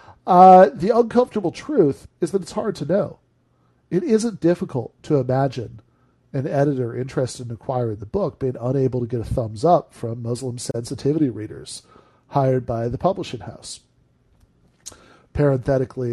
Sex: male